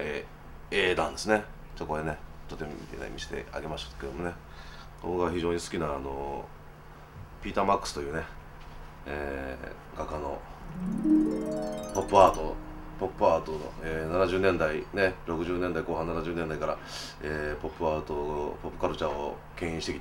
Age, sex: 30-49, male